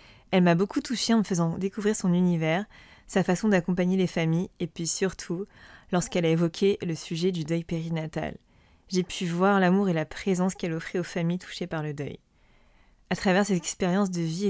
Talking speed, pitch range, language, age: 195 wpm, 165-190 Hz, French, 20-39